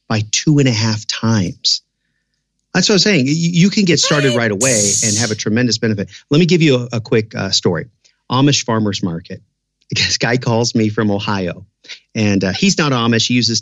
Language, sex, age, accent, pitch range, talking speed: English, male, 40-59, American, 100-130 Hz, 205 wpm